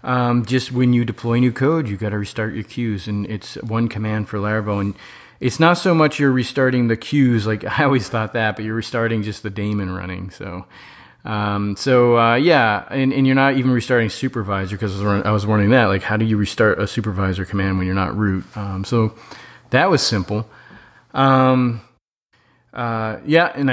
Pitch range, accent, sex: 100-125 Hz, American, male